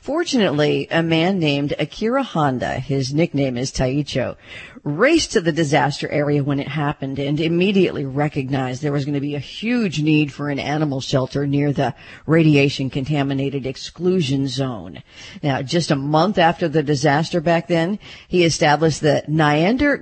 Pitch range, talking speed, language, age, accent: 140-185 Hz, 155 wpm, English, 50-69, American